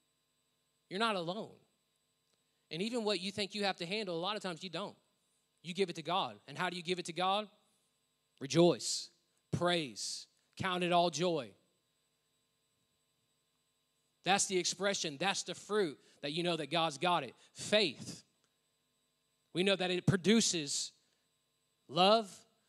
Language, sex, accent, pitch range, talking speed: English, male, American, 165-210 Hz, 150 wpm